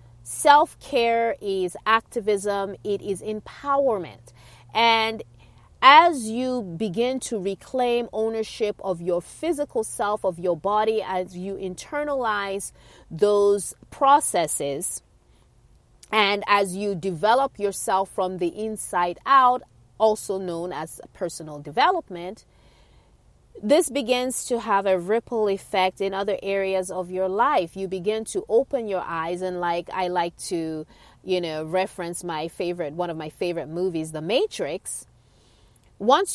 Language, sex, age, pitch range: English, female, 30-49, 180-245 Hz